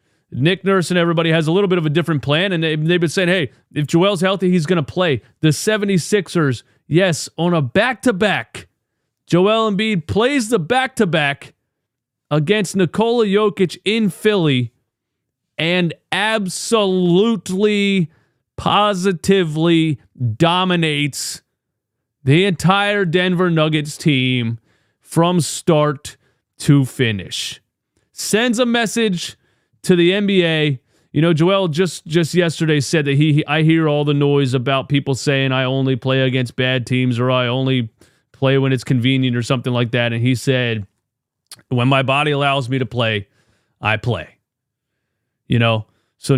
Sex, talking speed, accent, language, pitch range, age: male, 140 wpm, American, English, 130-185 Hz, 30-49